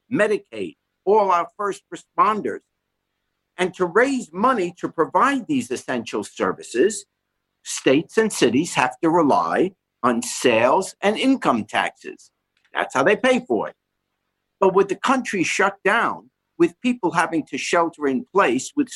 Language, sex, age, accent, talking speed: English, male, 60-79, American, 140 wpm